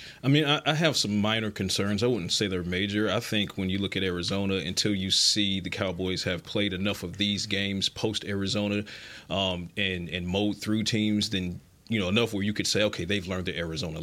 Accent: American